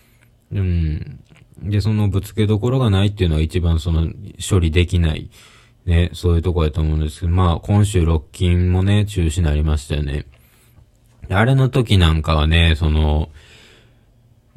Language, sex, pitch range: Japanese, male, 80-105 Hz